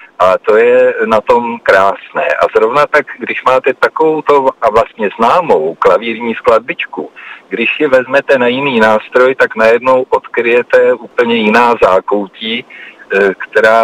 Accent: native